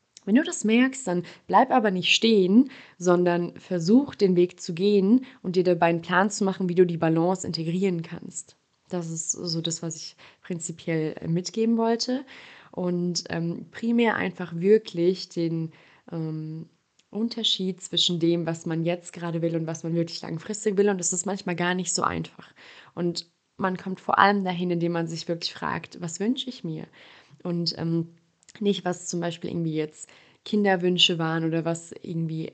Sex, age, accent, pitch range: female, 20-39, German, 165-195 Hz